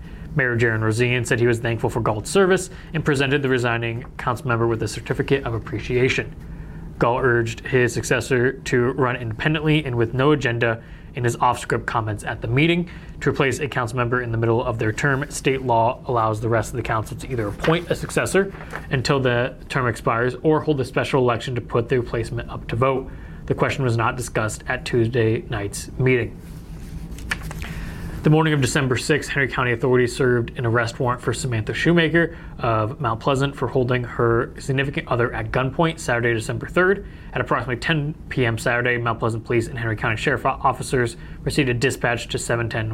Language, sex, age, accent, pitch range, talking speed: English, male, 20-39, American, 115-140 Hz, 190 wpm